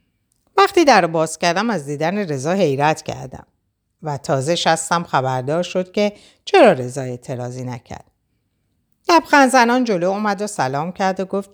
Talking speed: 145 wpm